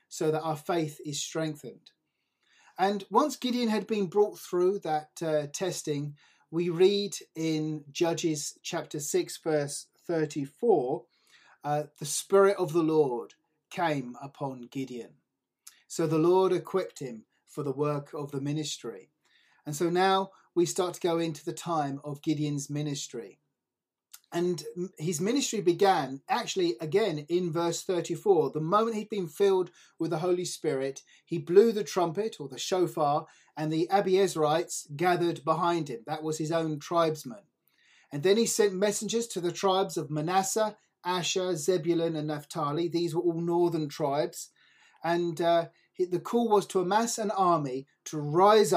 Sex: male